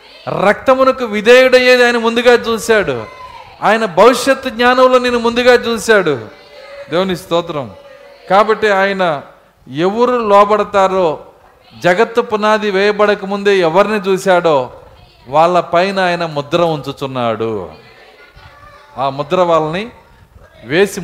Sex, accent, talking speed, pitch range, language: male, native, 90 wpm, 165-230 Hz, Telugu